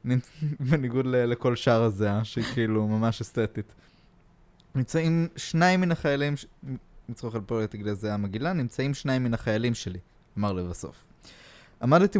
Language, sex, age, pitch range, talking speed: Hebrew, male, 20-39, 115-145 Hz, 135 wpm